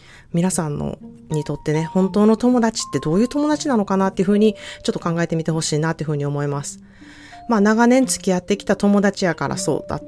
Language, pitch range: Japanese, 150-220 Hz